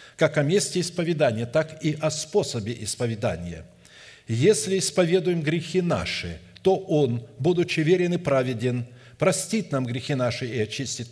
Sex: male